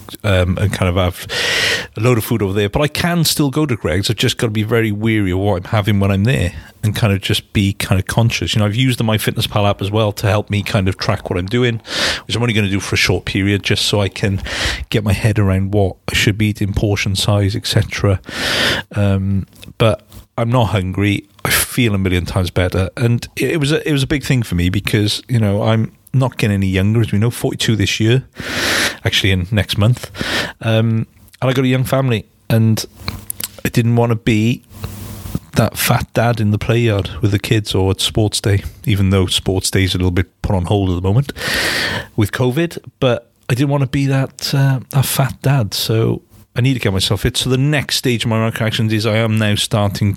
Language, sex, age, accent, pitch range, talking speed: English, male, 40-59, British, 100-120 Hz, 235 wpm